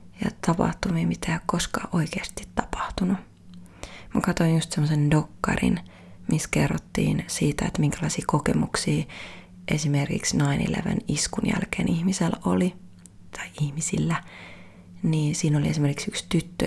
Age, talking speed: 30-49, 115 wpm